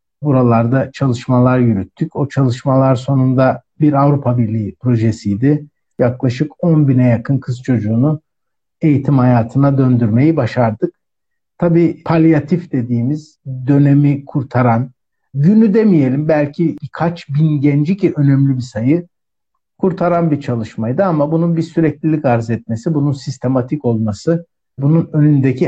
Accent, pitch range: native, 125-160 Hz